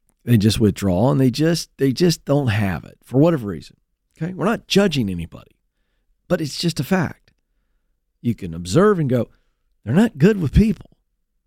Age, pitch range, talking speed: 40-59, 105-175 Hz, 180 wpm